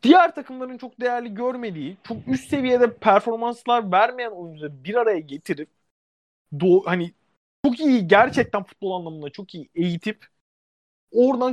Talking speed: 130 wpm